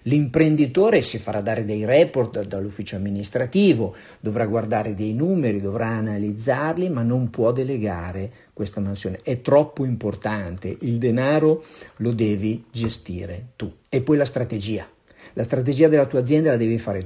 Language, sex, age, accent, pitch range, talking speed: Italian, male, 50-69, native, 105-135 Hz, 145 wpm